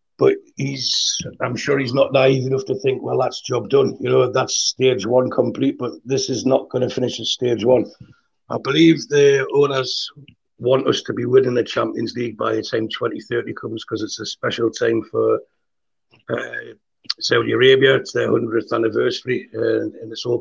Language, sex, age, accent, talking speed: English, male, 60-79, British, 190 wpm